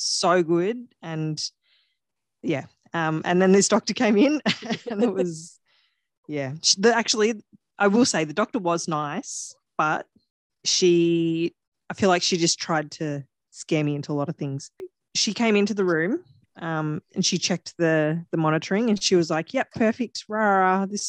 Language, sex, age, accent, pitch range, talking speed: English, female, 20-39, Australian, 165-210 Hz, 165 wpm